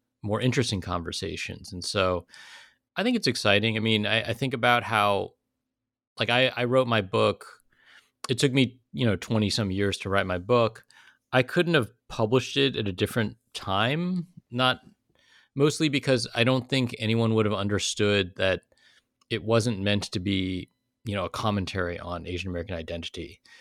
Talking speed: 170 wpm